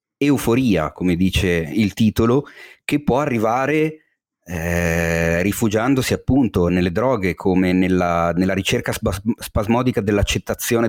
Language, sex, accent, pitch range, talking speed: Italian, male, native, 90-120 Hz, 105 wpm